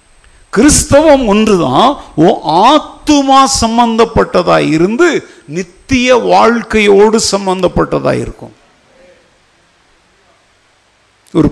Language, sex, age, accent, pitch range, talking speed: Tamil, male, 50-69, native, 170-250 Hz, 50 wpm